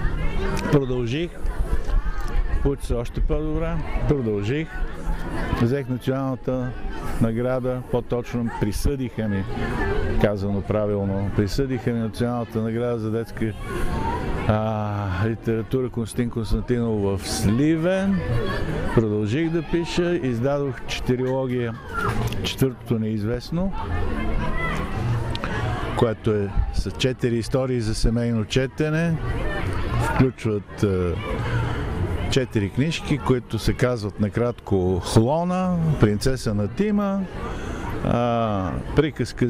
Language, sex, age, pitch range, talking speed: Bulgarian, male, 50-69, 105-135 Hz, 80 wpm